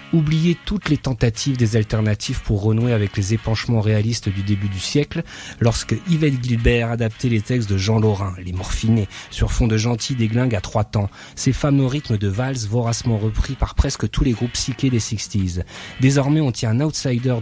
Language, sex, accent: French, male, French